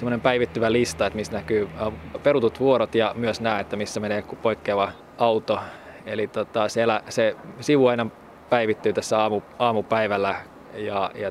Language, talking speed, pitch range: Finnish, 140 wpm, 105-120 Hz